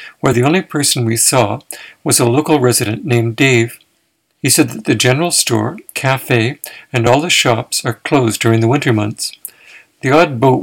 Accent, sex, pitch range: American, male, 115-140 Hz